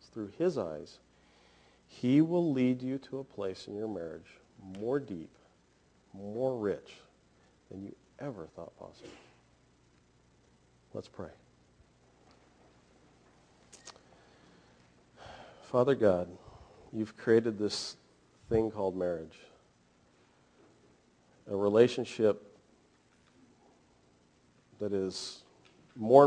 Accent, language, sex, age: American, English, male, 40-59